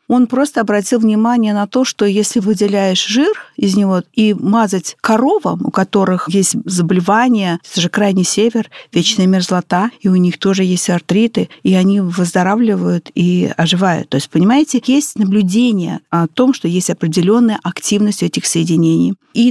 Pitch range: 185-225 Hz